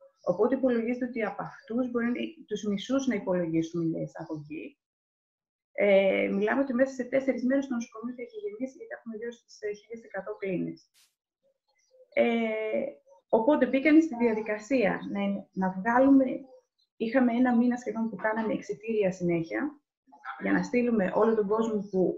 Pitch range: 190-250 Hz